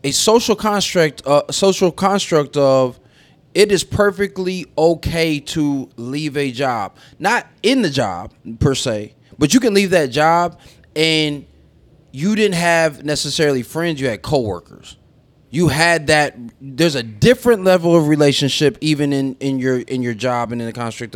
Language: English